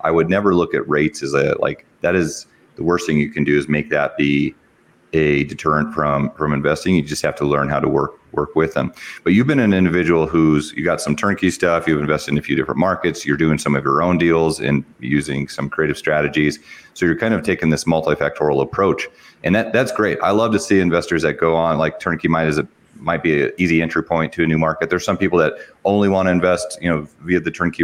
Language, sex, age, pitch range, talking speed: English, male, 30-49, 75-85 Hz, 250 wpm